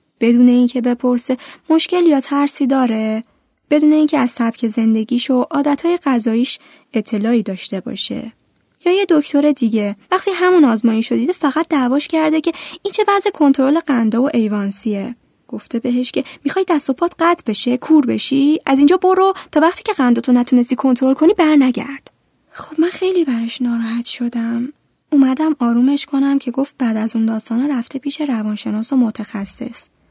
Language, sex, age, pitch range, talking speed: Persian, female, 10-29, 235-305 Hz, 160 wpm